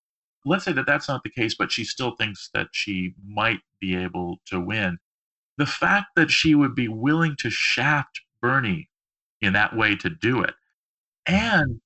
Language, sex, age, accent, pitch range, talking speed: English, male, 40-59, American, 105-150 Hz, 175 wpm